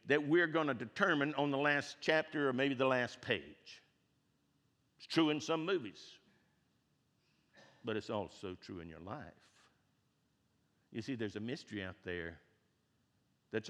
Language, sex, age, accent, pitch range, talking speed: English, male, 60-79, American, 105-145 Hz, 150 wpm